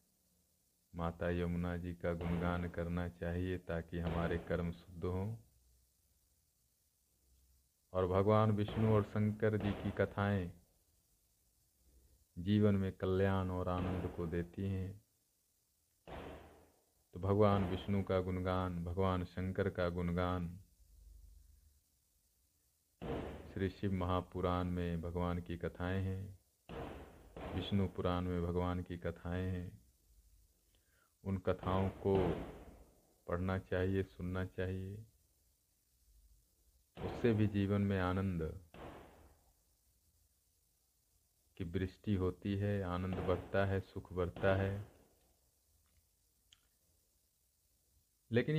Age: 50-69